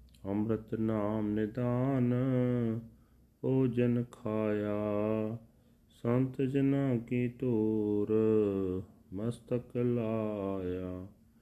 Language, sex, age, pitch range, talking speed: Punjabi, male, 30-49, 95-120 Hz, 60 wpm